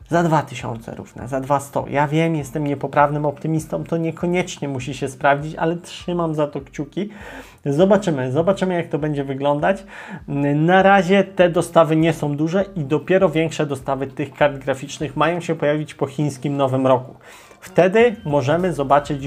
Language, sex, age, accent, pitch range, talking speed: Polish, male, 30-49, native, 145-210 Hz, 160 wpm